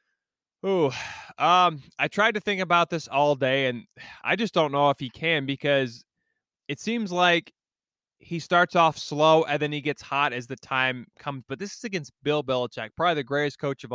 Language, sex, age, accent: English, male, 20-39, American